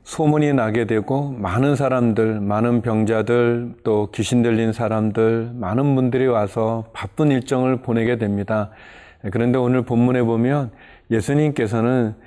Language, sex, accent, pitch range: Korean, male, native, 110-130 Hz